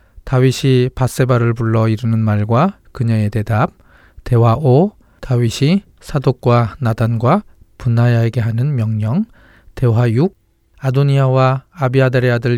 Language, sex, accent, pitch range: Korean, male, native, 110-135 Hz